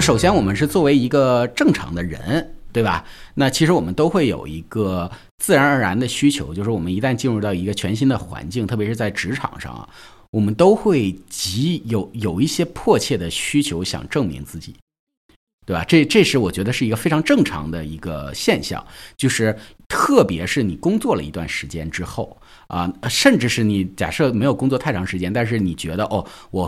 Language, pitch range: Chinese, 90-125 Hz